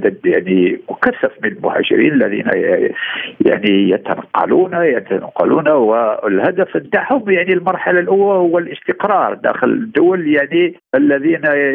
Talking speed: 100 wpm